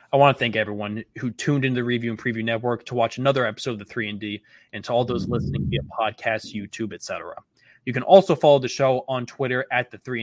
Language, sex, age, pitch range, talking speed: English, male, 20-39, 110-130 Hz, 250 wpm